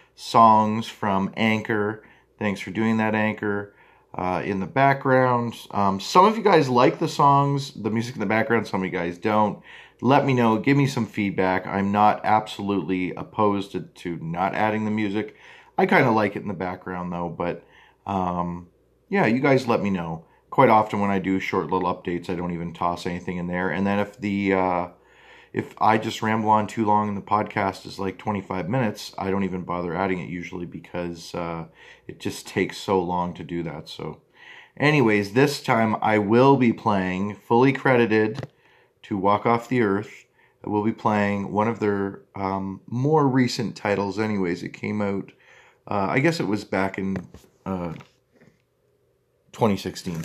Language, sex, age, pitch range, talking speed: English, male, 30-49, 95-110 Hz, 185 wpm